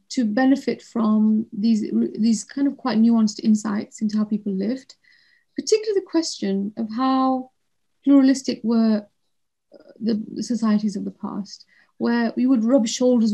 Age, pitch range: 30-49, 210-250 Hz